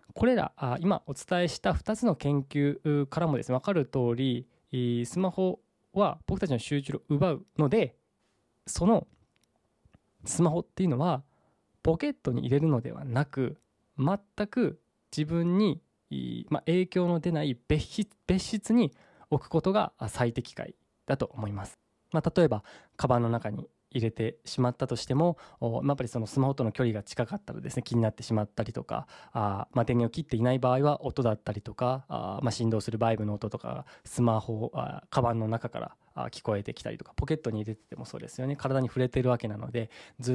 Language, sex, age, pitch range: Japanese, male, 20-39, 115-155 Hz